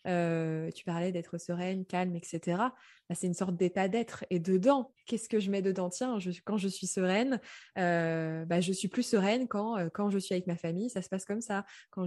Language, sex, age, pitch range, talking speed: French, female, 20-39, 180-230 Hz, 230 wpm